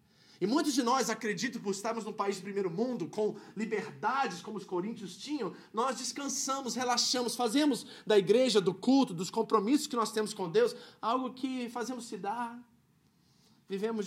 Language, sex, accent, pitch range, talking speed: Portuguese, male, Brazilian, 175-235 Hz, 165 wpm